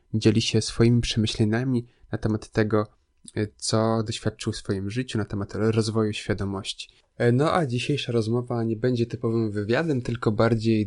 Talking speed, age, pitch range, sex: 145 wpm, 20-39, 105-115 Hz, male